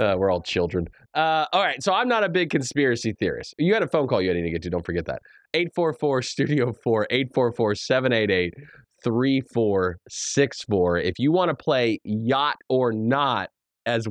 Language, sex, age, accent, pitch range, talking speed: English, male, 20-39, American, 100-140 Hz, 160 wpm